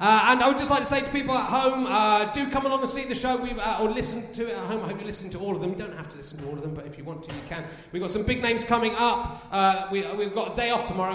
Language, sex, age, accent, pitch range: English, male, 30-49, British, 185-230 Hz